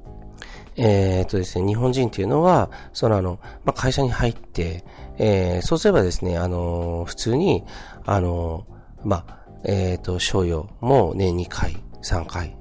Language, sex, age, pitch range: Japanese, male, 40-59, 85-115 Hz